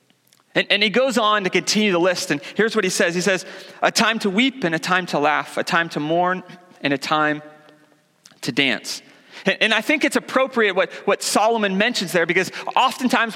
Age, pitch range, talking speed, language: 30-49, 175-230 Hz, 200 wpm, English